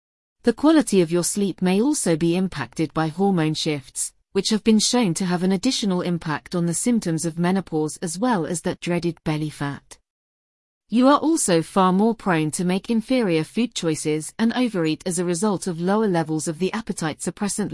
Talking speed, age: 185 wpm, 40-59